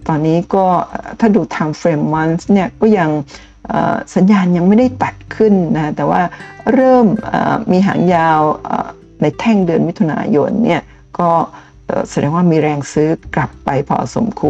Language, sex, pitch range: Thai, female, 160-210 Hz